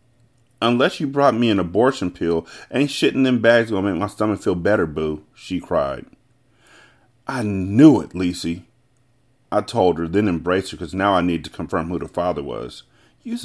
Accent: American